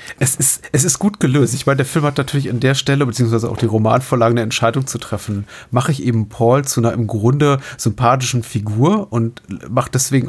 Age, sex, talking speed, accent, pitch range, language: 30-49, male, 210 wpm, German, 115-140 Hz, German